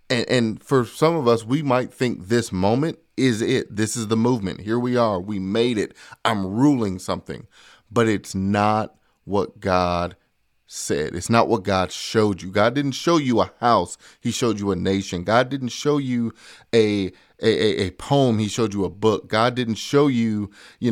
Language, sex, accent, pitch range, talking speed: English, male, American, 95-115 Hz, 190 wpm